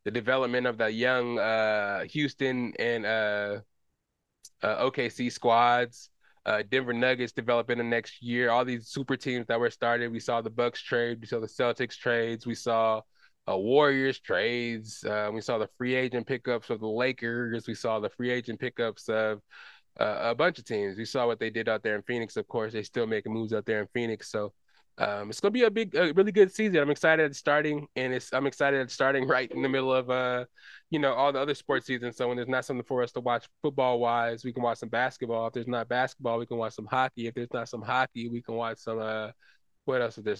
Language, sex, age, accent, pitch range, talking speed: English, male, 20-39, American, 115-130 Hz, 230 wpm